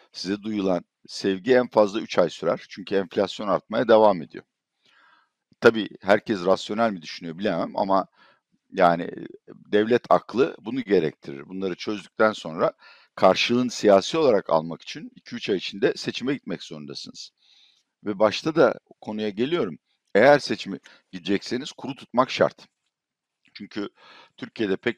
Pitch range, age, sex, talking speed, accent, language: 95-120 Hz, 60-79, male, 125 wpm, native, Turkish